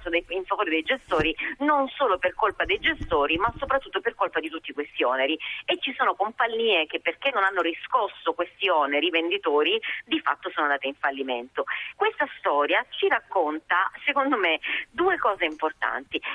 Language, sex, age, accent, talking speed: Italian, female, 40-59, native, 165 wpm